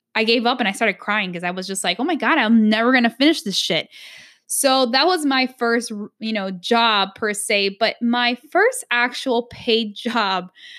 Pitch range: 205-250 Hz